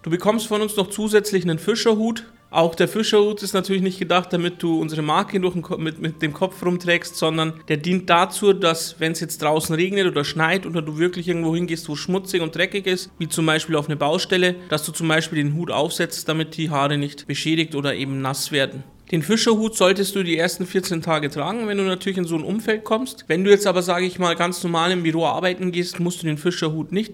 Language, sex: German, male